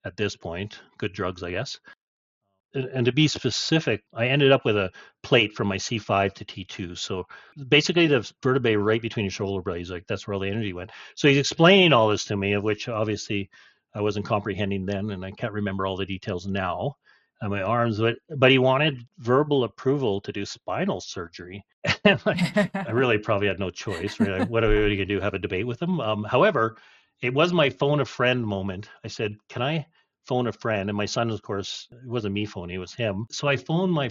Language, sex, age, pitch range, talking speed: English, male, 40-59, 100-135 Hz, 215 wpm